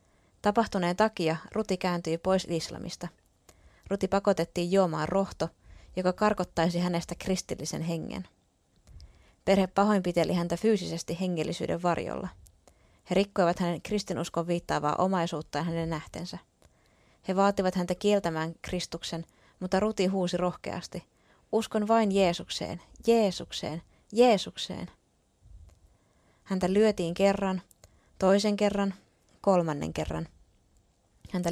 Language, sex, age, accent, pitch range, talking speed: Finnish, female, 20-39, native, 160-195 Hz, 95 wpm